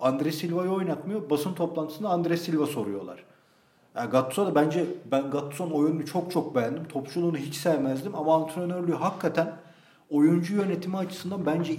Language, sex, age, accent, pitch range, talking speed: Turkish, male, 40-59, native, 140-175 Hz, 145 wpm